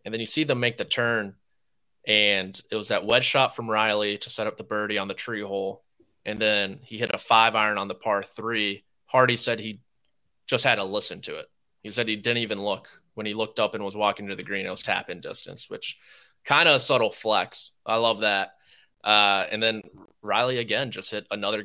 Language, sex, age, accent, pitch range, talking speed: English, male, 20-39, American, 100-115 Hz, 225 wpm